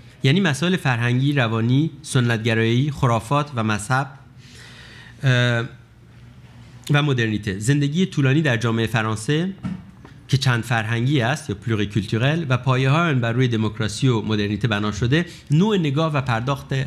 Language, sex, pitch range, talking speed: Persian, male, 110-145 Hz, 125 wpm